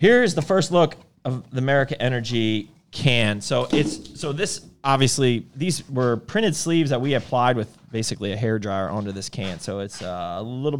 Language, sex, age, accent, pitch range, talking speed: English, male, 30-49, American, 110-140 Hz, 185 wpm